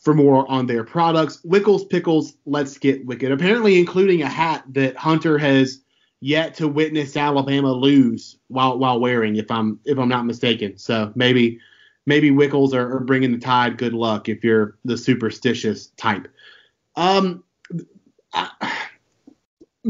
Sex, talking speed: male, 150 wpm